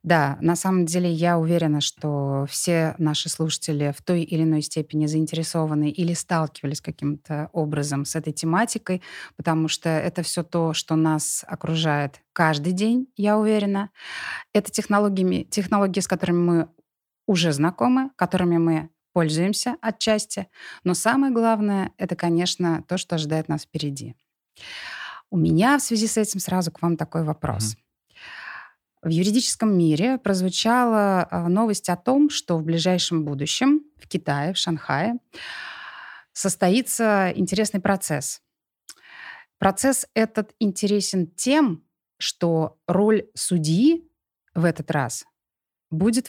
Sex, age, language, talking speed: female, 20-39, Russian, 125 wpm